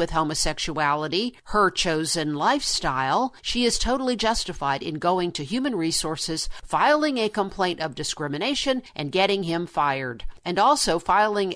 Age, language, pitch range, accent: 50-69, English, 160-205 Hz, American